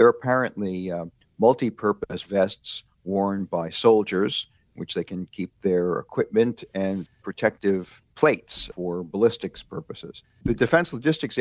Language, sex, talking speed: English, male, 120 wpm